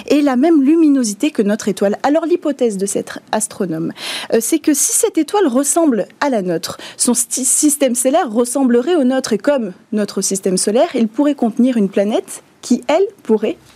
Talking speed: 185 wpm